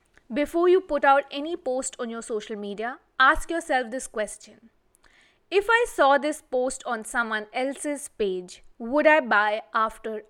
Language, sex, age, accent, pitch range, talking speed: English, female, 20-39, Indian, 225-310 Hz, 155 wpm